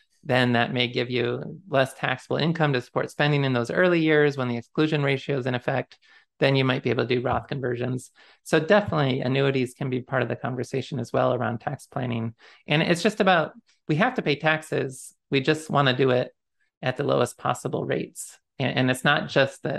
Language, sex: English, male